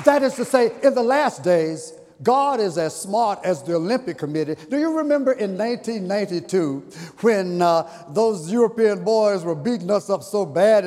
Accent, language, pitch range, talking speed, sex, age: American, English, 165-245 Hz, 175 wpm, male, 50-69